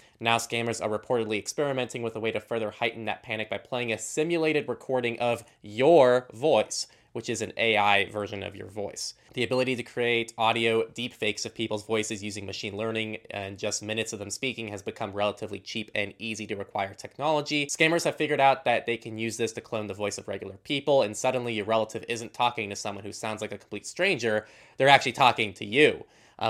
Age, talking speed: 20-39, 210 wpm